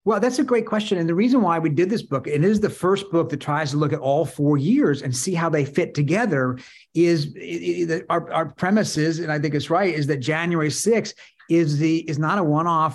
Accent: American